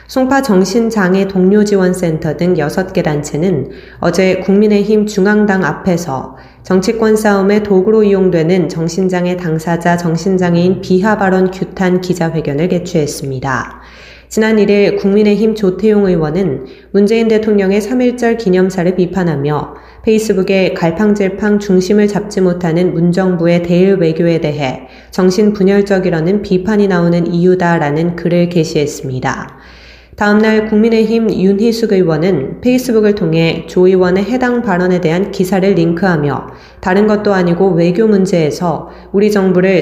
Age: 20-39